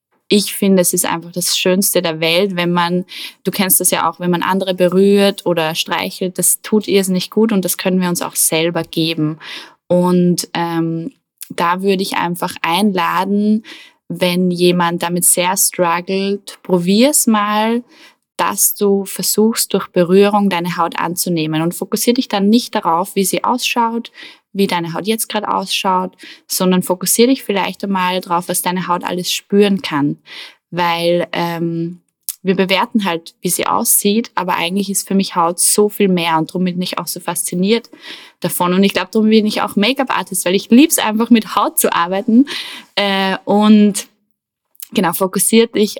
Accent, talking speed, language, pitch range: German, 170 wpm, German, 175-210 Hz